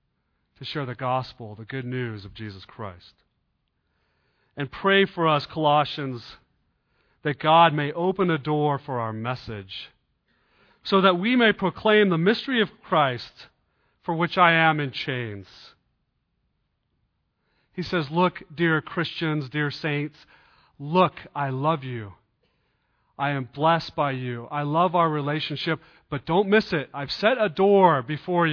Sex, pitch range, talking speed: male, 120-180 Hz, 145 wpm